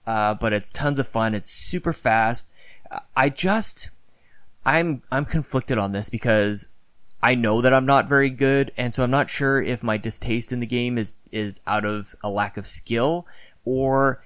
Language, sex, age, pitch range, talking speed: English, male, 20-39, 110-135 Hz, 185 wpm